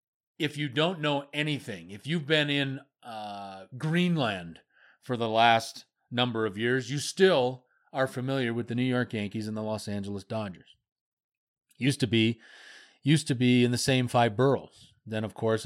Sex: male